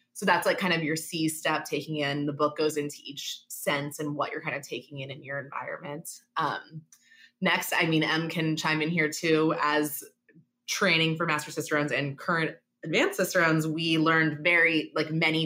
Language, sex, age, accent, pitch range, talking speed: English, female, 20-39, American, 145-170 Hz, 195 wpm